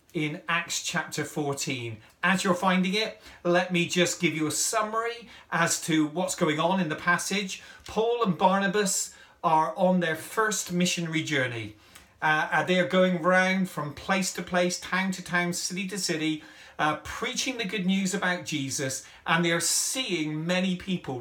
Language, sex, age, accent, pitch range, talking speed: English, male, 40-59, British, 145-185 Hz, 170 wpm